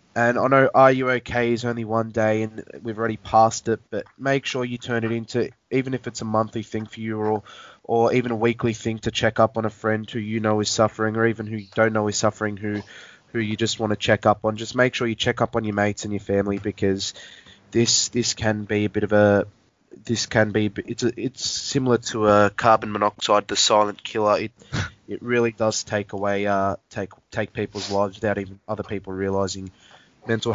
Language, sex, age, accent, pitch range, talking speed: English, male, 20-39, Australian, 105-115 Hz, 230 wpm